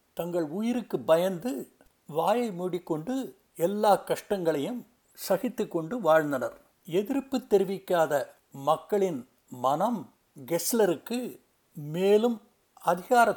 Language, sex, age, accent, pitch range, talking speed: Tamil, male, 60-79, native, 165-225 Hz, 75 wpm